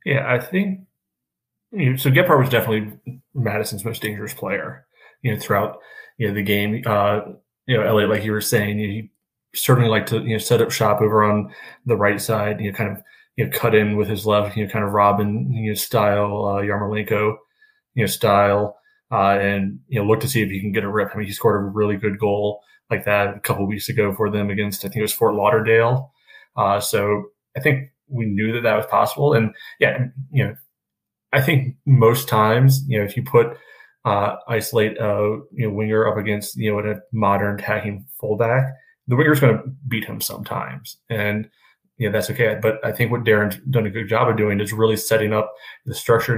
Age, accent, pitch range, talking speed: 30-49, American, 105-120 Hz, 215 wpm